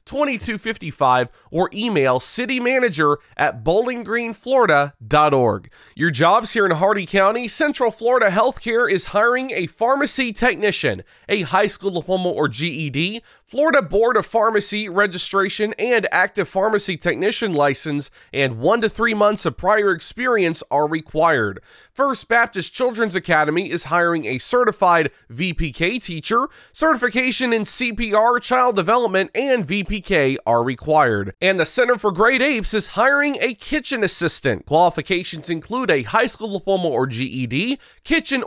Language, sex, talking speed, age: English, male, 135 wpm, 30-49